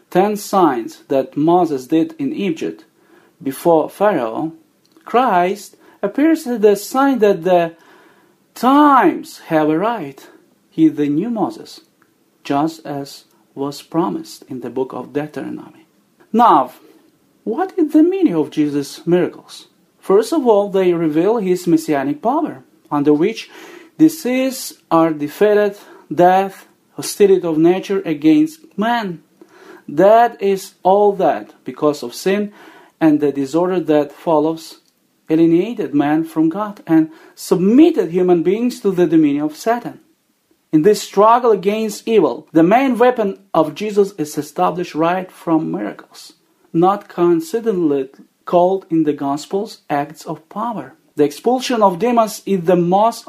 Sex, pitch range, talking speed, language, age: male, 160-245 Hz, 130 wpm, Ukrainian, 40-59